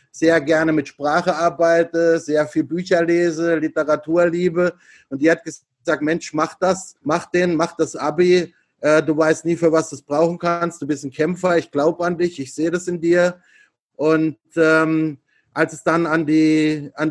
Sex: male